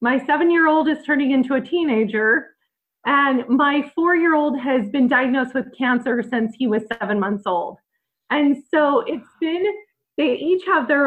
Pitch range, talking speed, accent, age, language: 235-285 Hz, 155 wpm, American, 20-39, English